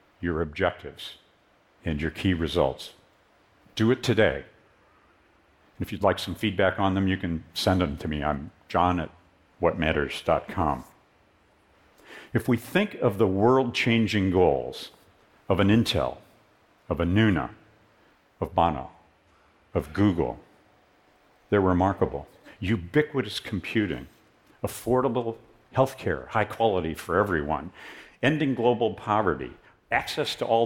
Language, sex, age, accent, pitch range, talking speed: English, male, 50-69, American, 90-115 Hz, 115 wpm